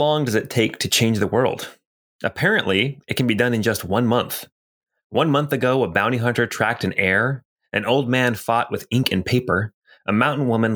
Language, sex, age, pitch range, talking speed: English, male, 30-49, 100-125 Hz, 210 wpm